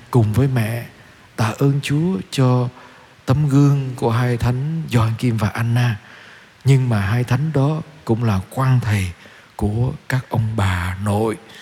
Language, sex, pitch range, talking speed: Vietnamese, male, 110-140 Hz, 155 wpm